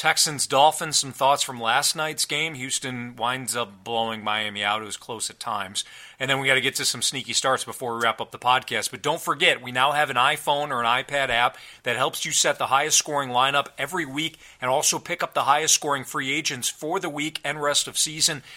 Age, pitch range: 40-59, 125-155 Hz